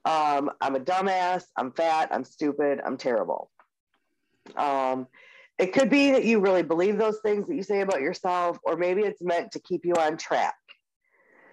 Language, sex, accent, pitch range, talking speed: English, female, American, 155-210 Hz, 175 wpm